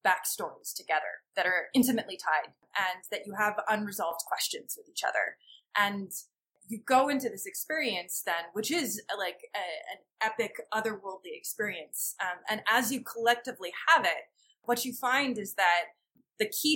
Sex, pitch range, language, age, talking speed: female, 190-240 Hz, English, 20-39, 155 wpm